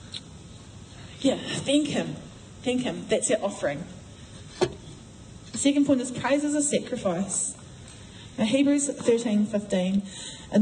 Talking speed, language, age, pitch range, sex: 105 wpm, English, 10-29, 190-240 Hz, female